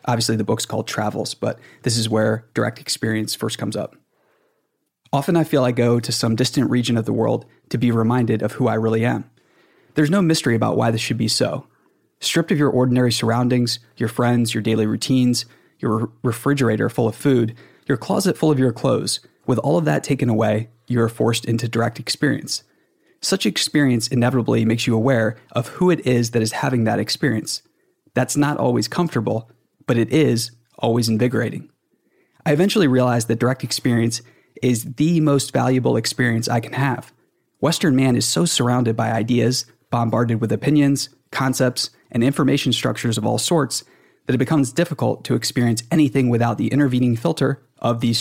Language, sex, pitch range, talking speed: English, male, 115-135 Hz, 180 wpm